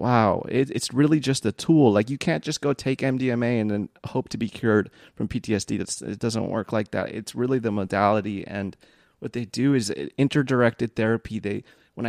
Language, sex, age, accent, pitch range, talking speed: English, male, 30-49, American, 105-125 Hz, 195 wpm